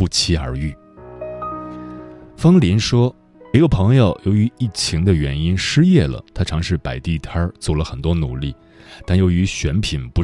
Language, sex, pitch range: Chinese, male, 75-110 Hz